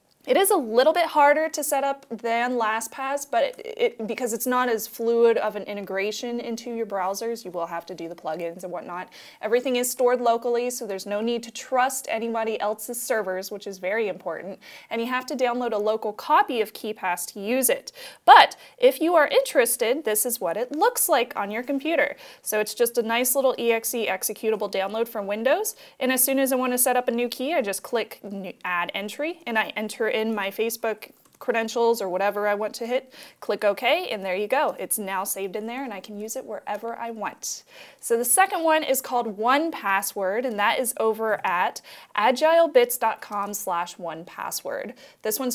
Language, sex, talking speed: English, female, 205 wpm